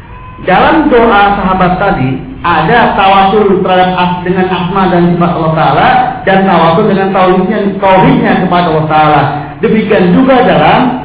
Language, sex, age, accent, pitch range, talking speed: Indonesian, male, 50-69, native, 155-210 Hz, 125 wpm